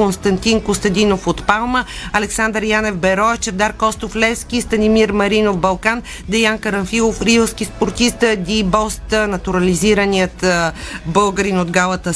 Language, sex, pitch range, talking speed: Bulgarian, female, 200-225 Hz, 115 wpm